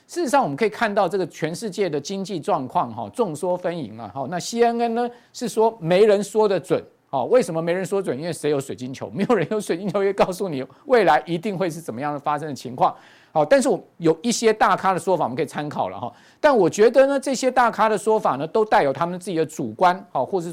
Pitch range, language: 155-205 Hz, Chinese